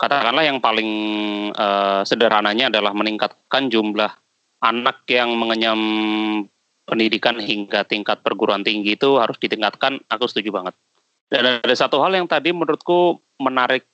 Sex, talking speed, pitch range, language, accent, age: male, 130 wpm, 105-130 Hz, Indonesian, native, 30-49